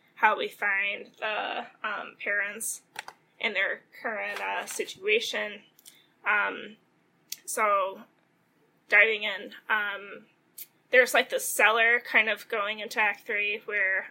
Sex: female